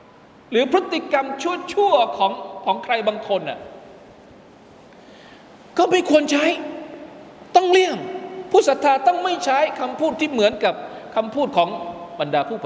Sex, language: male, Thai